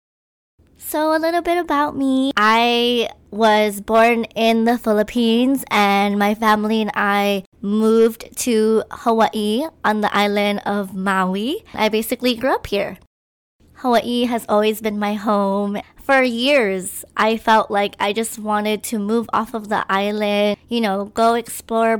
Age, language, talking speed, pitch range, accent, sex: 20-39, English, 145 wpm, 205-235 Hz, American, male